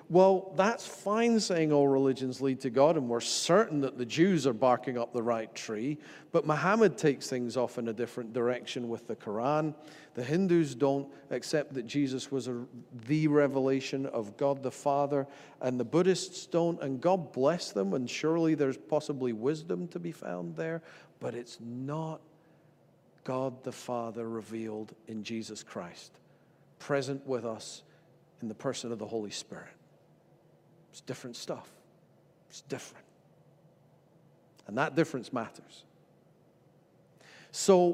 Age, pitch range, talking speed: 50-69, 125-165 Hz, 145 wpm